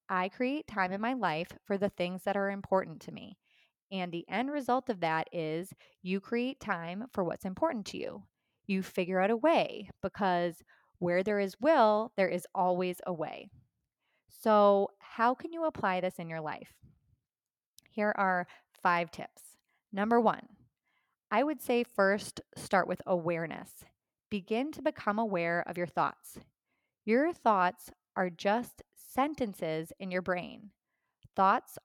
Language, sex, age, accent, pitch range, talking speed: English, female, 20-39, American, 175-230 Hz, 155 wpm